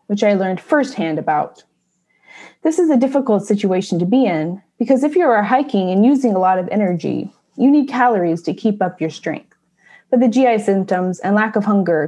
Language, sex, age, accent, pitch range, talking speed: English, female, 20-39, American, 185-255 Hz, 200 wpm